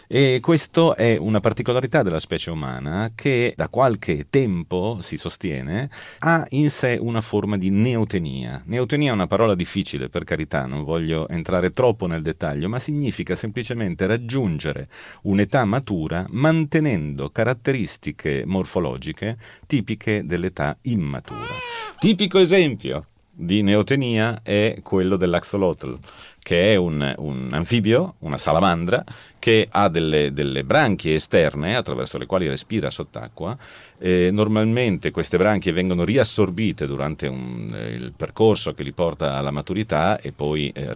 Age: 40-59